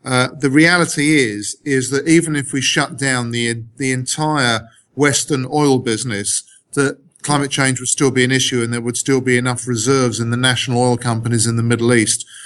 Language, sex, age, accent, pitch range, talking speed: English, male, 40-59, British, 120-135 Hz, 195 wpm